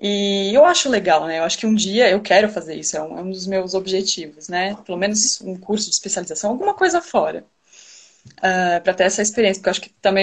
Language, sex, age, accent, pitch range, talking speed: Portuguese, female, 20-39, Brazilian, 185-245 Hz, 230 wpm